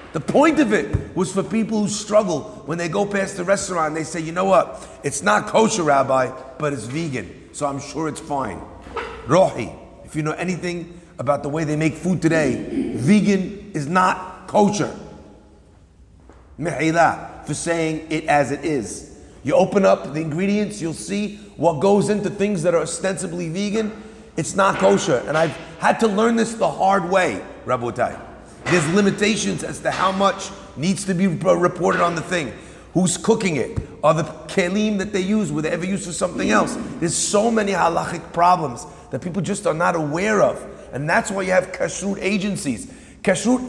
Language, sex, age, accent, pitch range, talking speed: English, male, 40-59, American, 160-205 Hz, 185 wpm